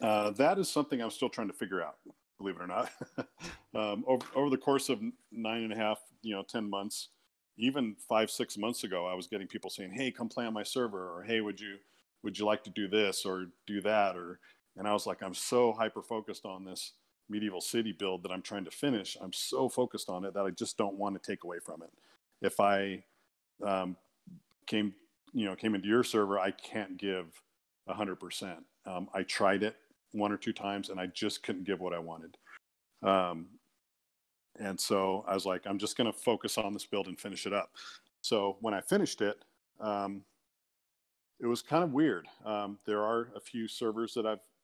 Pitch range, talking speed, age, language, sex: 95-110 Hz, 210 wpm, 40-59, English, male